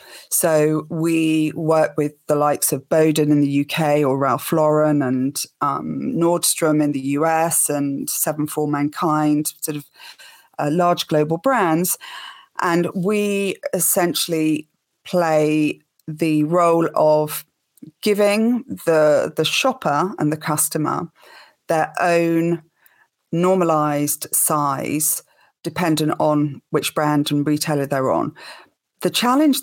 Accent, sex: British, female